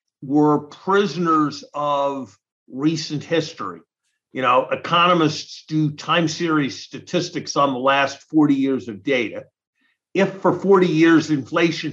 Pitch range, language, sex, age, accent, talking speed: 135-160 Hz, English, male, 50-69, American, 120 wpm